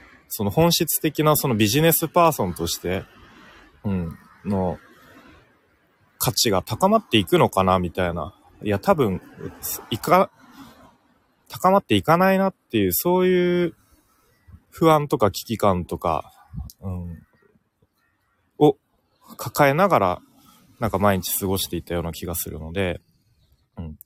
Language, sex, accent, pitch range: Japanese, male, native, 90-135 Hz